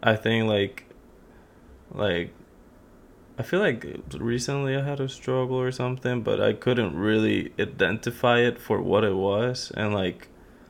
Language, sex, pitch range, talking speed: English, male, 95-115 Hz, 145 wpm